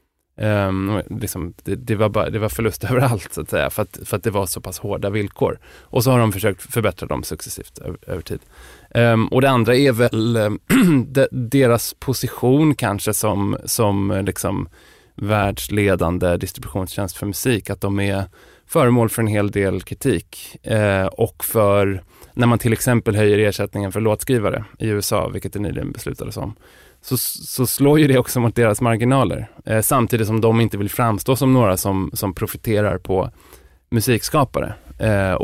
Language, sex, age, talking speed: Swedish, male, 20-39, 170 wpm